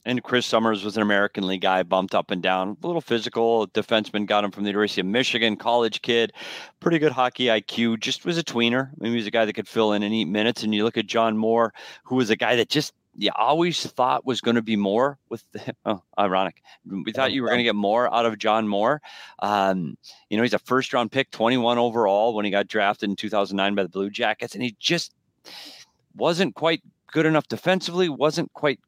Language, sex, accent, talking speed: English, male, American, 235 wpm